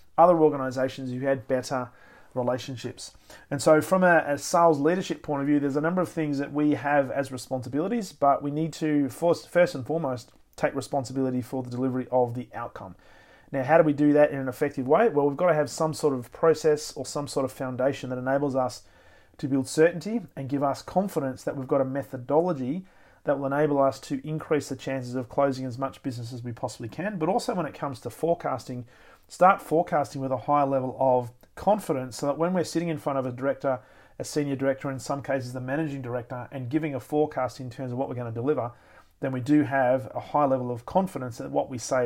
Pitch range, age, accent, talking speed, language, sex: 130-150 Hz, 30-49, Australian, 225 wpm, English, male